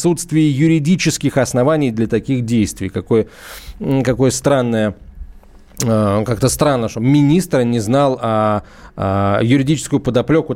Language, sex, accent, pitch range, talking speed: Russian, male, native, 125-160 Hz, 110 wpm